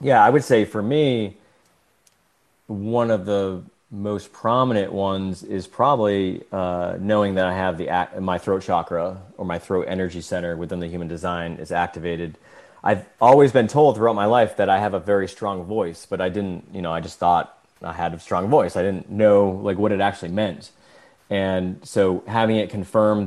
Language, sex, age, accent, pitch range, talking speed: English, male, 30-49, American, 95-110 Hz, 190 wpm